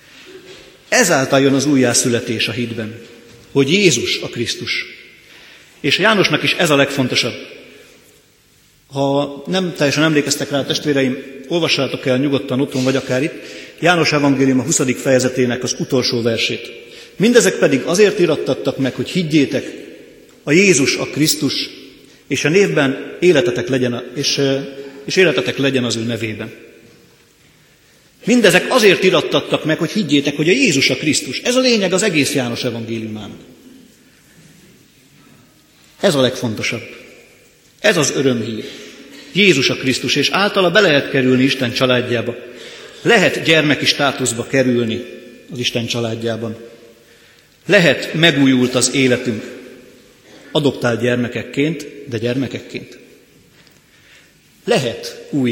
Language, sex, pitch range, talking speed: Hungarian, male, 120-150 Hz, 115 wpm